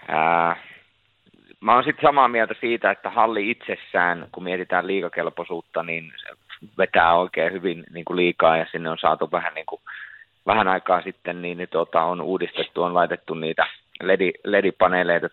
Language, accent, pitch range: Finnish, native, 85-95 Hz